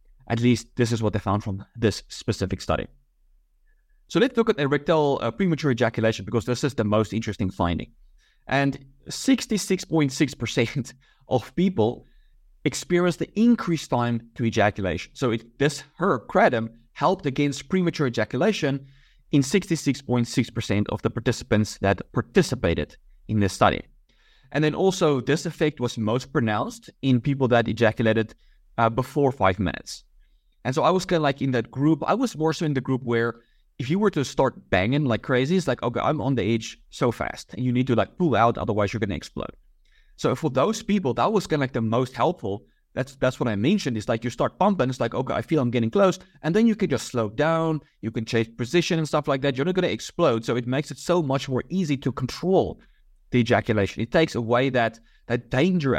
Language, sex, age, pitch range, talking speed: English, male, 30-49, 115-150 Hz, 200 wpm